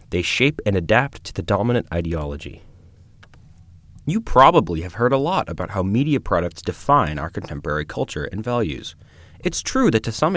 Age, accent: 30-49, American